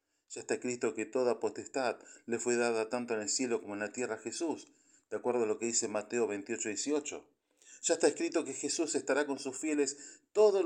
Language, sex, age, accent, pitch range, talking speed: Spanish, male, 40-59, Argentinian, 110-145 Hz, 215 wpm